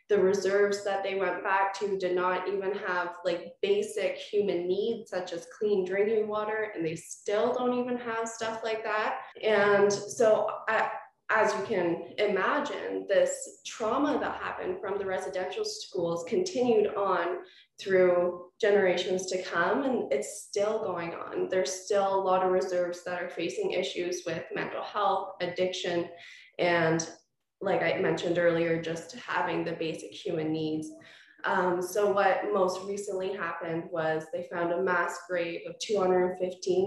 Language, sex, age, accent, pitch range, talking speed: English, female, 20-39, American, 175-210 Hz, 155 wpm